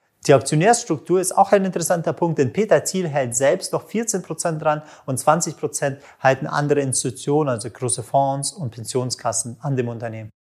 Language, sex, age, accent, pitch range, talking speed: German, male, 30-49, German, 140-175 Hz, 160 wpm